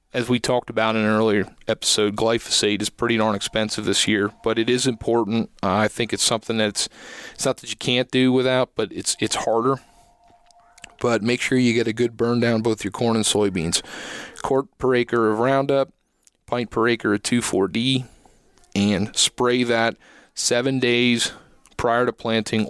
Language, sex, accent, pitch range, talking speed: English, male, American, 110-125 Hz, 180 wpm